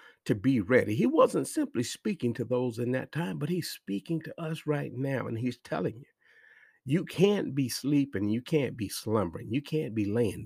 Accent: American